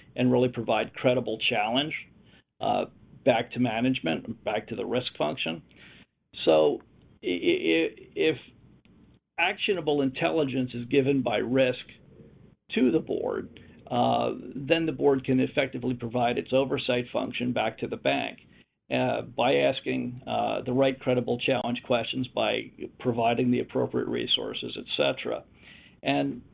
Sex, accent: male, American